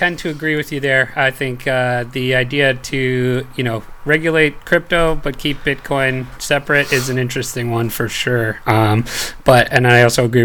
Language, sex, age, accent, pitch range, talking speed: English, male, 30-49, American, 125-155 Hz, 185 wpm